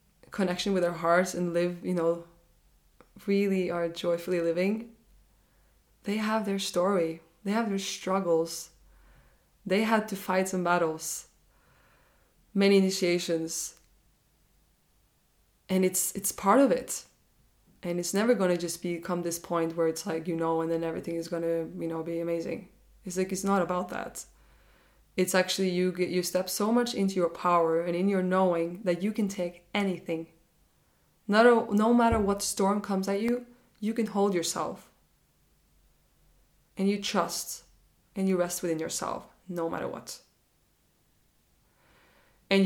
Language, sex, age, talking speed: English, female, 20-39, 155 wpm